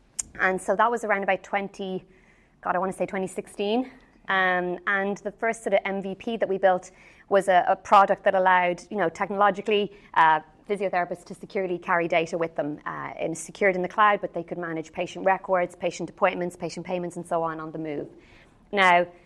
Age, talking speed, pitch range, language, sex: 30-49, 195 wpm, 175-200 Hz, English, female